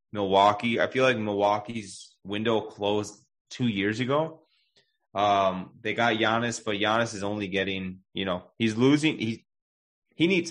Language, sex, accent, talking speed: English, male, American, 150 wpm